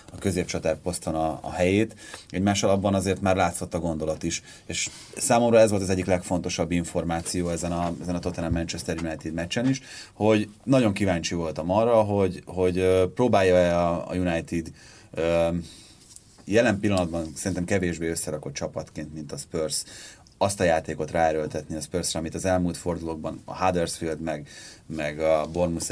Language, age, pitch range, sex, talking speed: Hungarian, 30-49, 80-100 Hz, male, 155 wpm